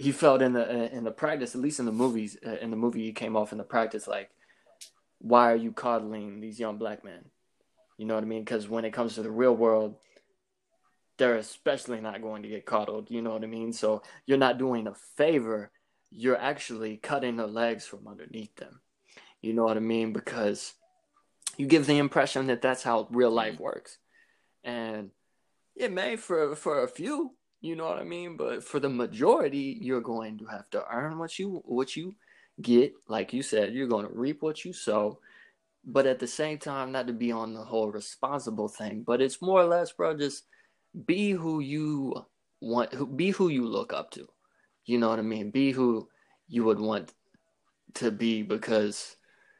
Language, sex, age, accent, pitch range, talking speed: English, male, 20-39, American, 110-140 Hz, 200 wpm